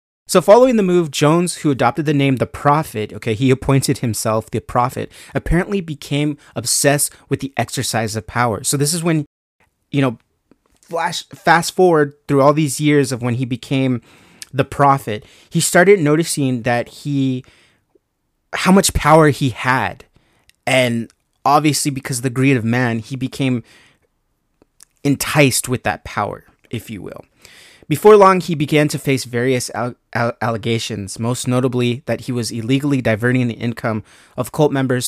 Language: English